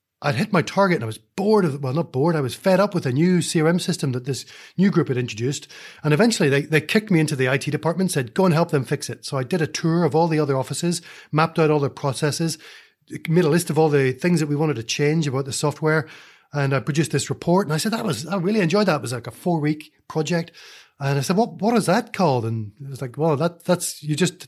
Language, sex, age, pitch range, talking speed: English, male, 30-49, 135-165 Hz, 275 wpm